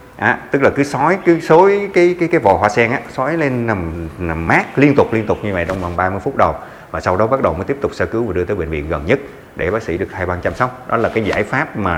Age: 30-49